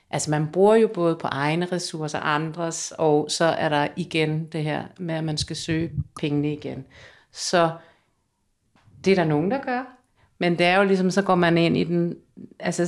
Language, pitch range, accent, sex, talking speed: Danish, 150-185 Hz, native, female, 200 wpm